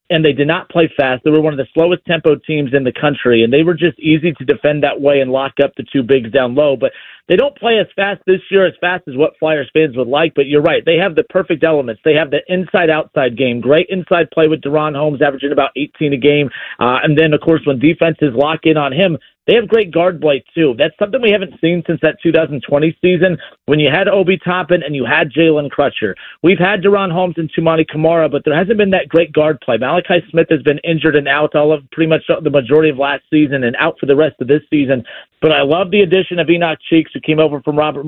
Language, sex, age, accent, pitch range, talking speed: English, male, 40-59, American, 145-170 Hz, 255 wpm